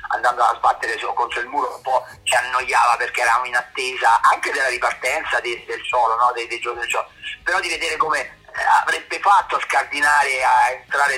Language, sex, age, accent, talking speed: Italian, male, 40-59, native, 190 wpm